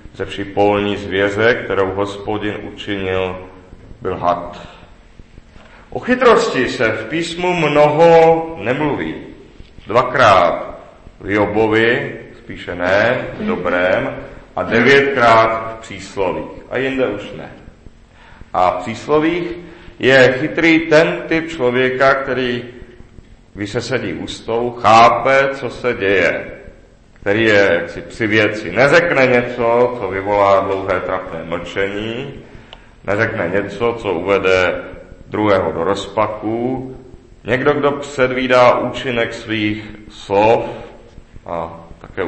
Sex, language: male, Czech